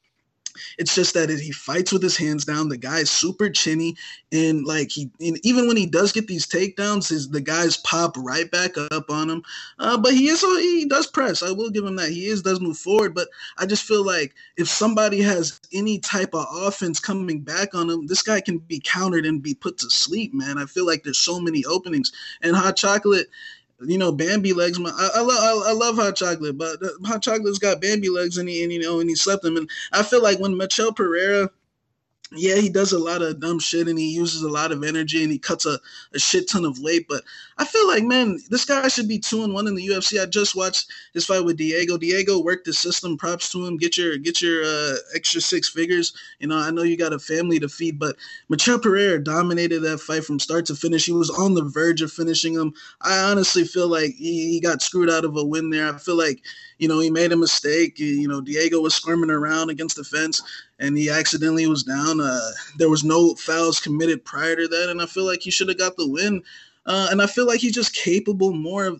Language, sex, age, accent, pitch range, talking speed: English, male, 20-39, American, 160-200 Hz, 240 wpm